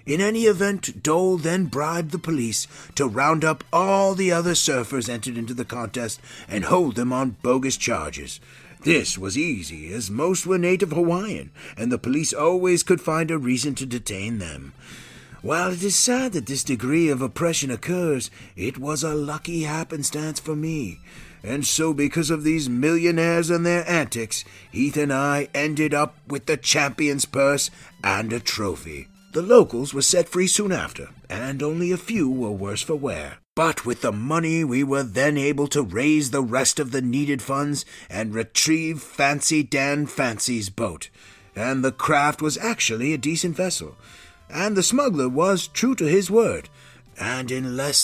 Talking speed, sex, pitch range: 170 wpm, male, 120-160 Hz